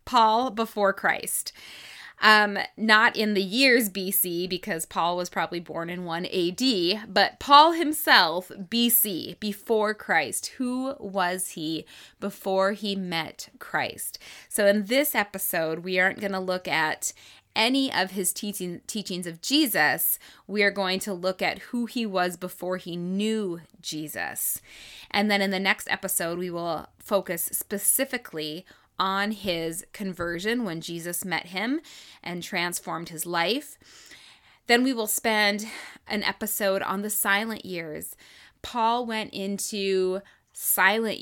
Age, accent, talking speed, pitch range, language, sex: 20-39, American, 140 wpm, 180-220 Hz, English, female